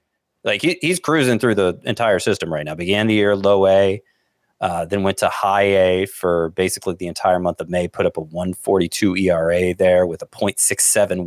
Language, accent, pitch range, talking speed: English, American, 90-120 Hz, 190 wpm